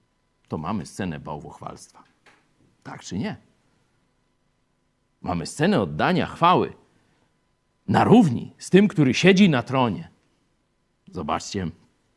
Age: 50-69